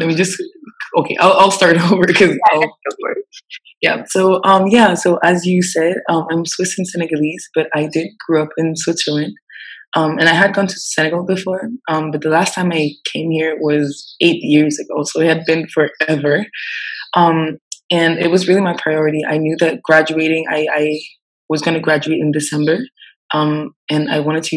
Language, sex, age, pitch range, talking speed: English, female, 20-39, 155-180 Hz, 190 wpm